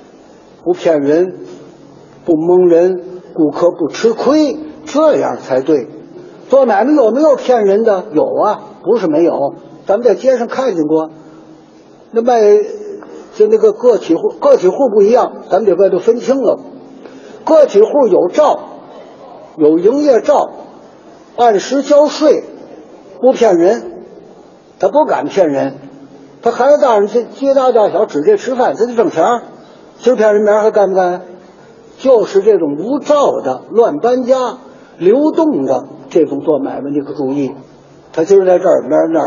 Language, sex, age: Chinese, male, 60-79